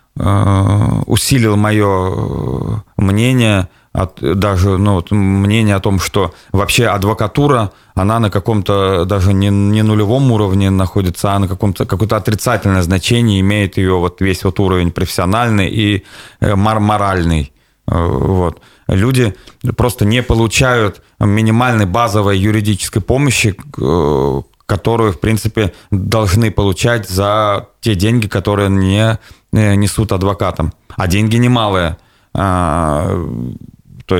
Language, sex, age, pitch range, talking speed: Russian, male, 30-49, 90-110 Hz, 100 wpm